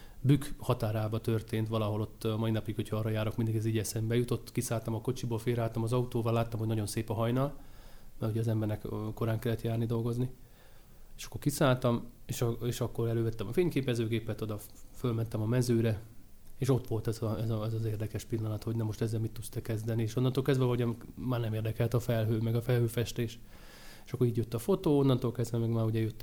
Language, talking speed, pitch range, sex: Hungarian, 210 wpm, 110-120 Hz, male